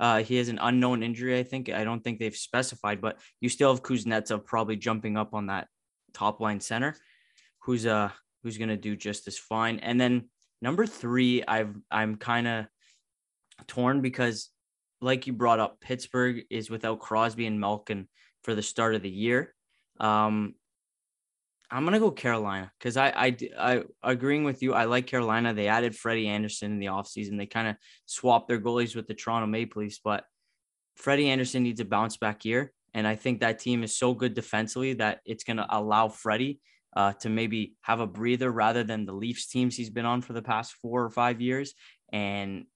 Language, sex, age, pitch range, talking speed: English, male, 20-39, 105-125 Hz, 195 wpm